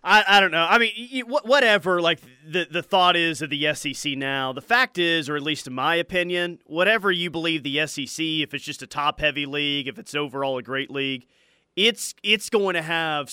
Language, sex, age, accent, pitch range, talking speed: English, male, 30-49, American, 140-175 Hz, 210 wpm